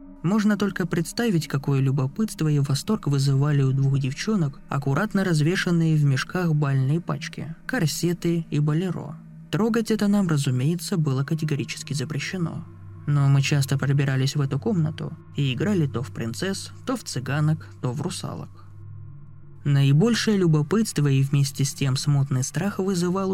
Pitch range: 140-175 Hz